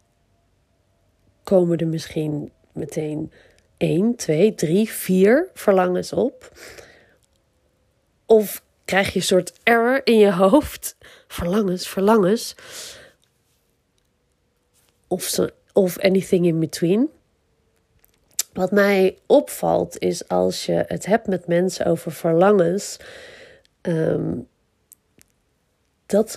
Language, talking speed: Dutch, 90 wpm